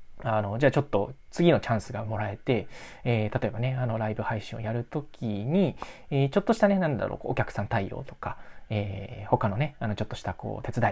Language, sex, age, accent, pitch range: Japanese, male, 20-39, native, 110-155 Hz